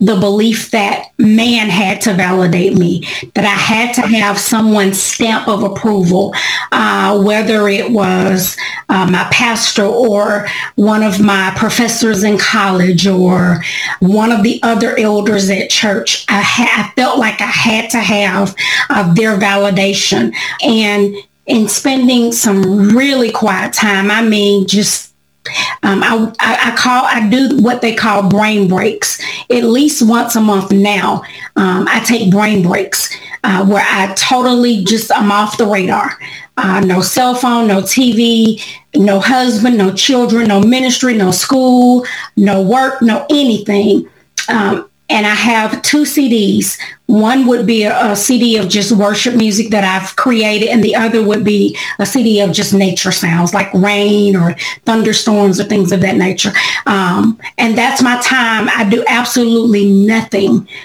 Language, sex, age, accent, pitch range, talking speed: English, female, 30-49, American, 200-235 Hz, 155 wpm